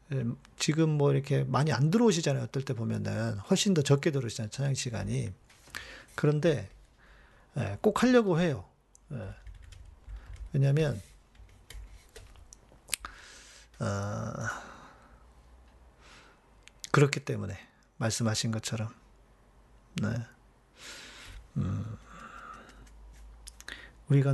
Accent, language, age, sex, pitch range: native, Korean, 40-59, male, 110-165 Hz